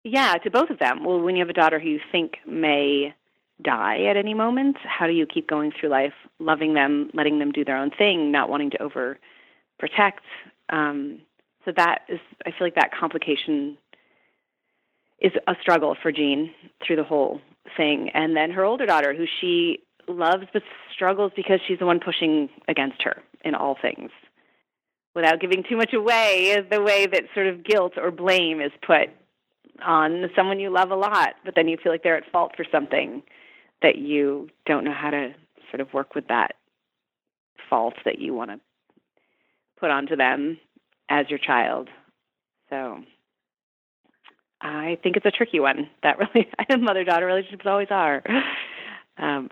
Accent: American